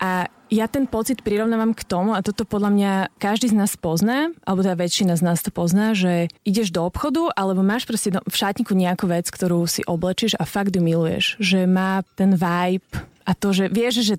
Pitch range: 175-215 Hz